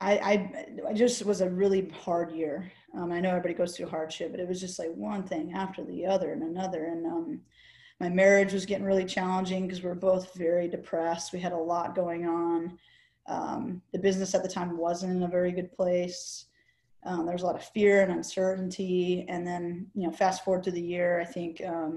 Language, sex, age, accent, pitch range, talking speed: English, female, 20-39, American, 175-195 Hz, 220 wpm